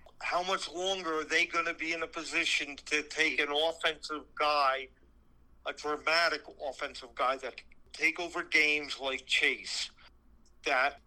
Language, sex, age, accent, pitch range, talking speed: English, male, 50-69, American, 130-155 Hz, 150 wpm